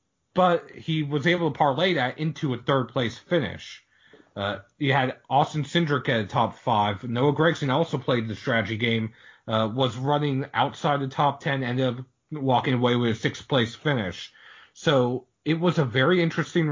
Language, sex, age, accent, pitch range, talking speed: English, male, 30-49, American, 120-150 Hz, 170 wpm